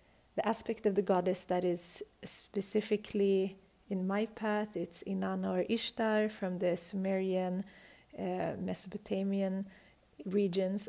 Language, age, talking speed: English, 30-49, 115 wpm